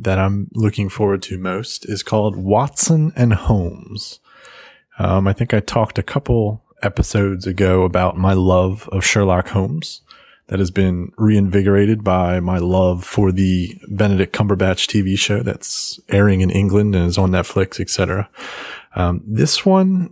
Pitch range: 95-115 Hz